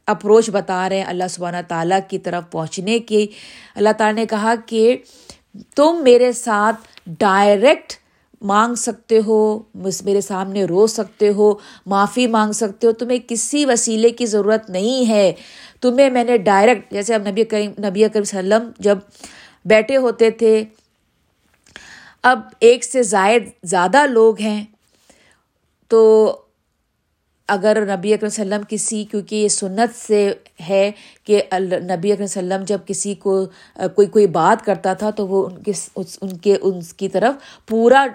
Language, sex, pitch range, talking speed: Urdu, female, 195-230 Hz, 145 wpm